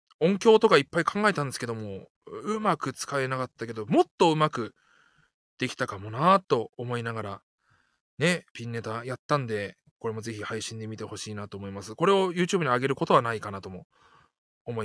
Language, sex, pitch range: Japanese, male, 110-180 Hz